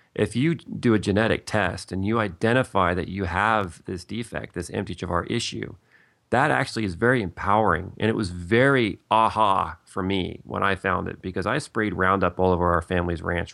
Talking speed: 190 wpm